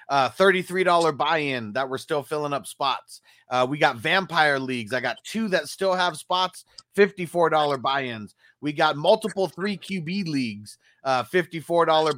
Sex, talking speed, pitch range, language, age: male, 160 wpm, 140-190 Hz, English, 30-49